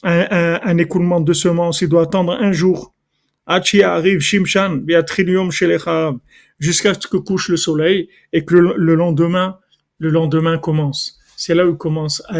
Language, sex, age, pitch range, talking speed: French, male, 40-59, 155-185 Hz, 155 wpm